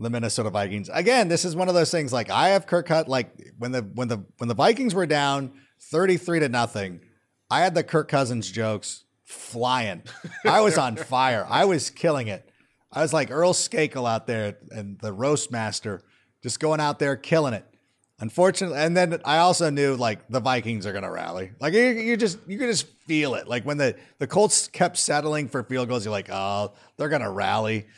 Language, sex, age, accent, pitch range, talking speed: English, male, 30-49, American, 120-170 Hz, 210 wpm